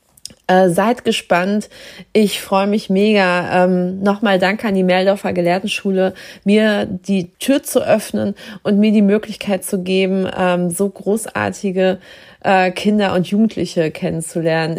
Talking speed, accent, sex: 130 wpm, German, female